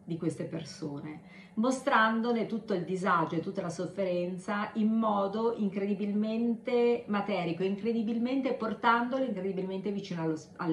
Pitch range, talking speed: 160-215 Hz, 115 wpm